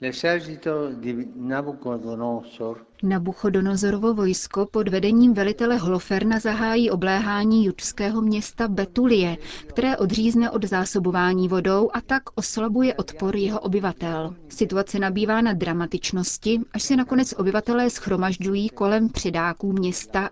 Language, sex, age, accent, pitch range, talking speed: Czech, female, 30-49, native, 180-220 Hz, 100 wpm